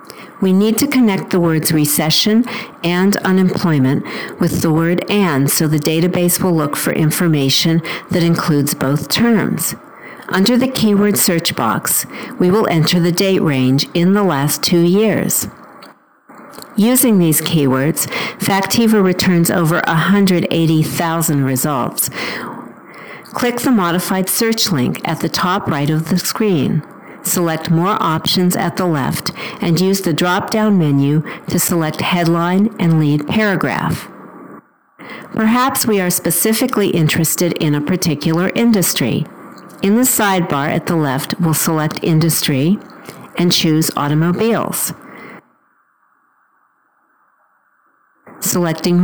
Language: English